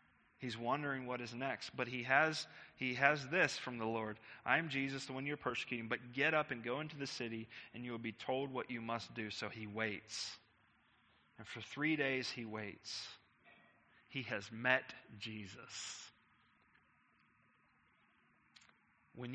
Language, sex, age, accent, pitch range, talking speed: English, male, 30-49, American, 125-175 Hz, 160 wpm